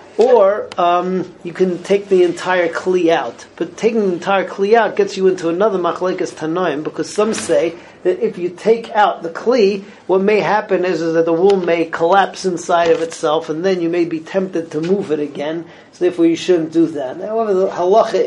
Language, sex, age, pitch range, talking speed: English, male, 40-59, 160-190 Hz, 205 wpm